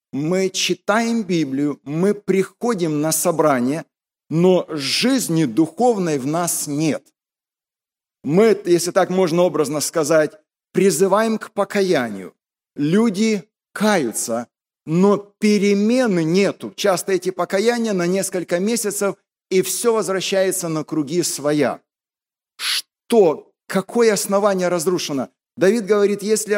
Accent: native